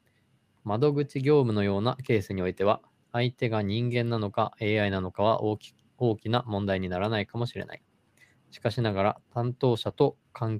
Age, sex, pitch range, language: 20-39, male, 95-120 Hz, Japanese